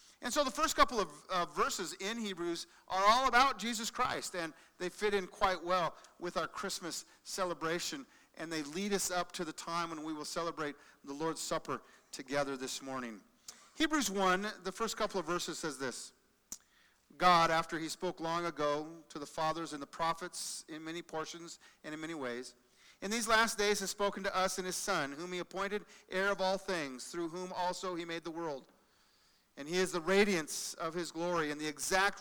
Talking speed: 200 wpm